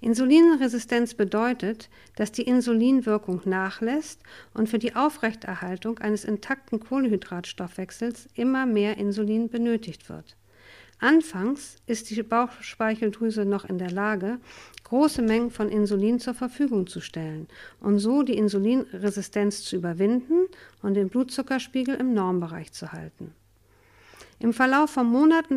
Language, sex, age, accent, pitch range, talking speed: German, female, 50-69, German, 200-245 Hz, 120 wpm